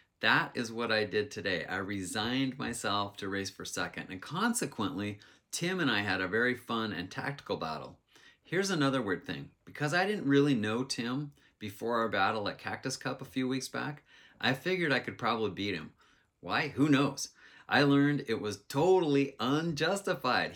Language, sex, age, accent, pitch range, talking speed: English, male, 30-49, American, 110-145 Hz, 180 wpm